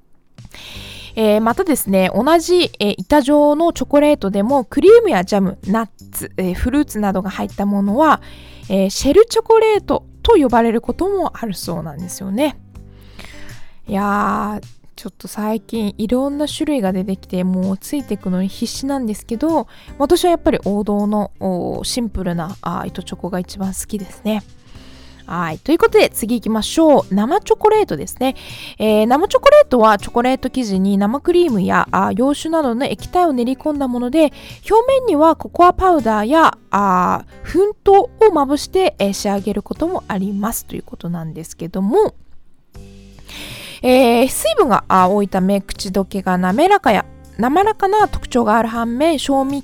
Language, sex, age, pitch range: Japanese, female, 20-39, 195-305 Hz